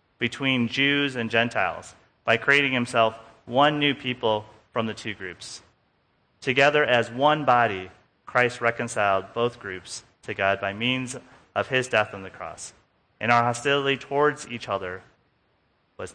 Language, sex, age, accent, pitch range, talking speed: English, male, 30-49, American, 105-140 Hz, 145 wpm